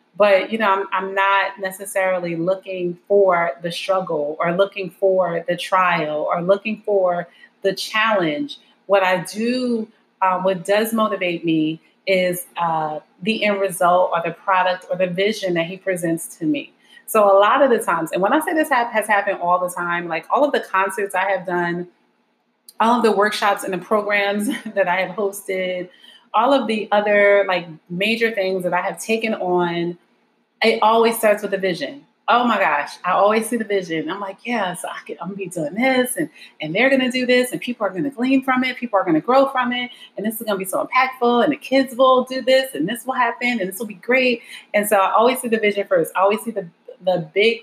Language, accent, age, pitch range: English, American, 30-49, 185-235 Hz